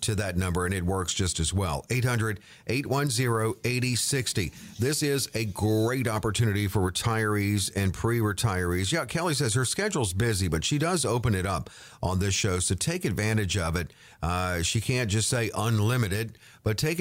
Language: English